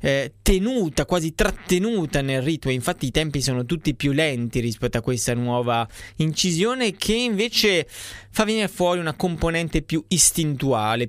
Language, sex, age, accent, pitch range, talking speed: Italian, male, 20-39, native, 120-160 Hz, 145 wpm